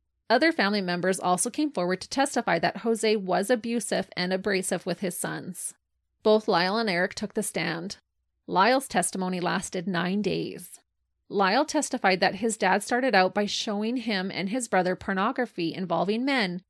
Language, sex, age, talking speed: English, female, 30-49, 160 wpm